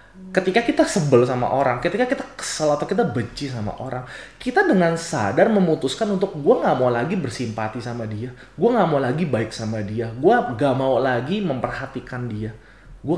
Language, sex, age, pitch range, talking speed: Indonesian, male, 30-49, 105-150 Hz, 180 wpm